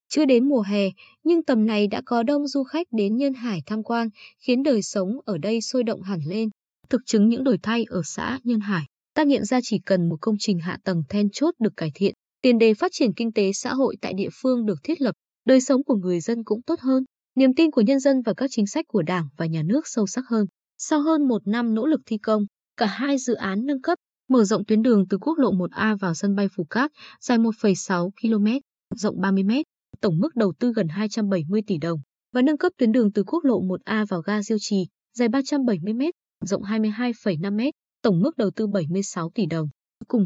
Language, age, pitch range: Vietnamese, 20-39, 195-255 Hz